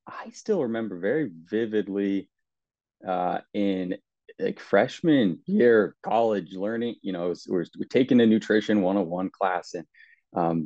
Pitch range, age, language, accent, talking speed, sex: 90-105 Hz, 30-49, English, American, 125 wpm, male